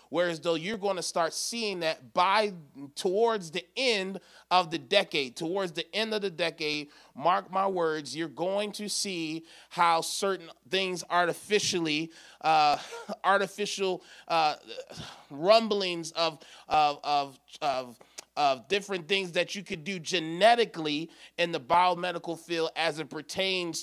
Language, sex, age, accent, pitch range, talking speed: English, male, 30-49, American, 150-185 Hz, 140 wpm